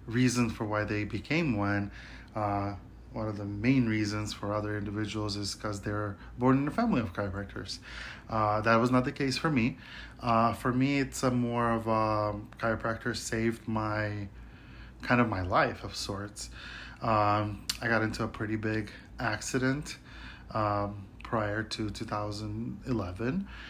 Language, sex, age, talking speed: English, male, 20-39, 155 wpm